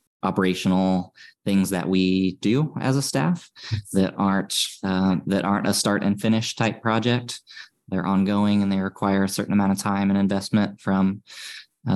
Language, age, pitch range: English, 20-39, 95-110 Hz